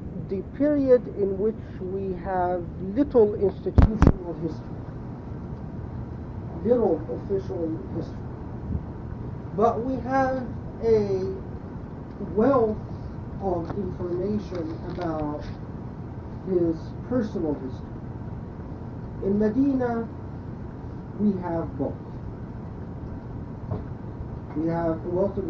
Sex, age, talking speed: male, 40-59, 75 wpm